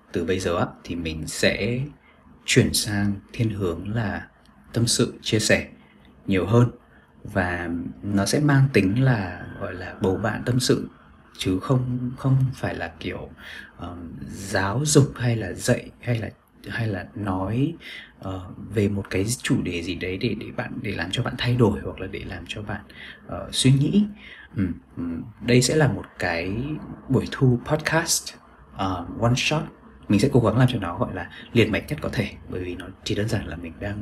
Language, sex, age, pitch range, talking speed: Vietnamese, male, 20-39, 90-125 Hz, 190 wpm